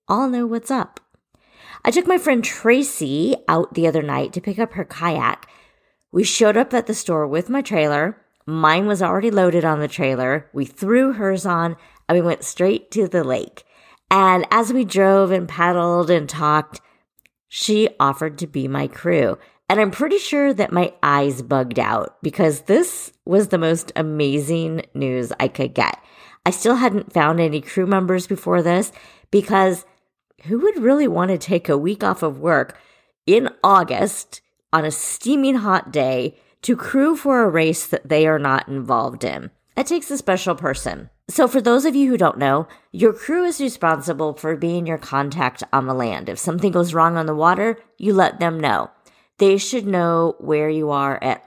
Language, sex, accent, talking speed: English, female, American, 185 wpm